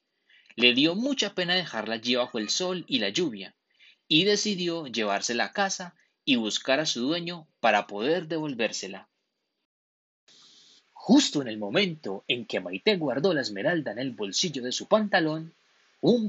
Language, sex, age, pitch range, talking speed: Spanish, male, 30-49, 130-210 Hz, 155 wpm